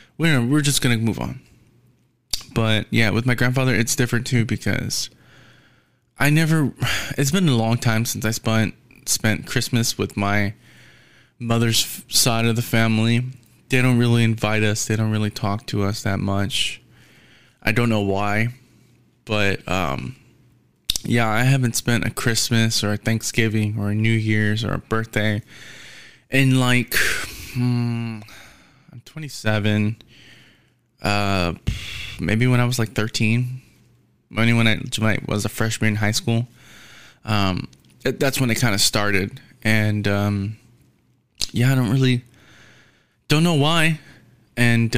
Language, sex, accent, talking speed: English, male, American, 140 wpm